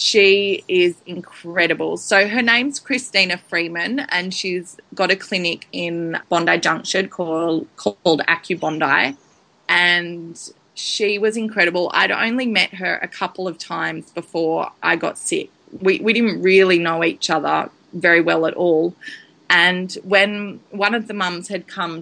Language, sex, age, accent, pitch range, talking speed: English, female, 20-39, Australian, 165-195 Hz, 145 wpm